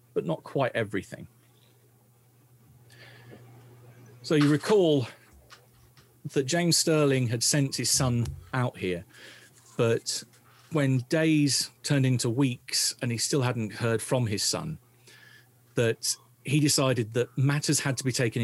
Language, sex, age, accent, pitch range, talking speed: English, male, 40-59, British, 110-130 Hz, 125 wpm